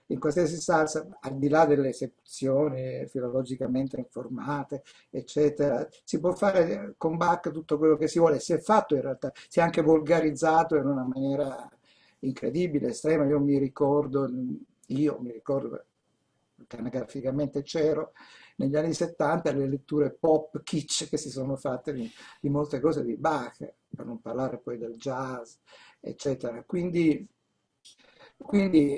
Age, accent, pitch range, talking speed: 60-79, native, 135-160 Hz, 140 wpm